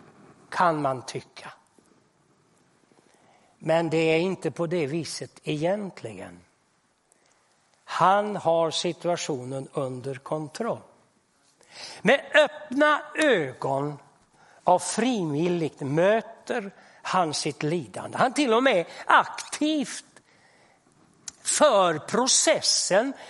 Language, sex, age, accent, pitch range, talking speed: Swedish, male, 60-79, native, 155-230 Hz, 80 wpm